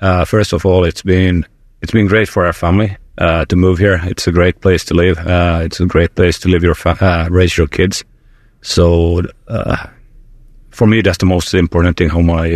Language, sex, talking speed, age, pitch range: English, male, 215 wpm, 30-49, 90-105 Hz